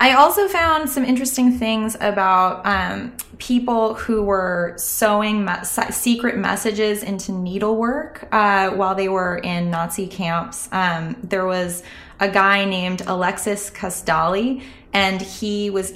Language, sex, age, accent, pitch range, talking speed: English, female, 20-39, American, 175-205 Hz, 130 wpm